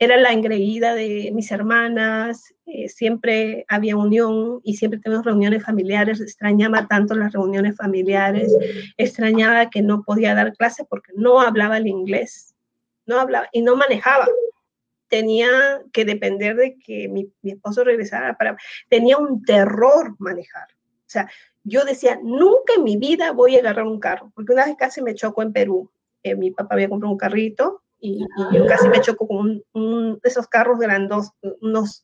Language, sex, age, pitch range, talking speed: English, female, 30-49, 210-265 Hz, 170 wpm